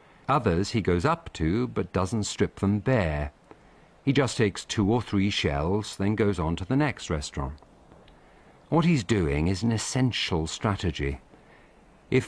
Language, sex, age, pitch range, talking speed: English, male, 50-69, 85-115 Hz, 155 wpm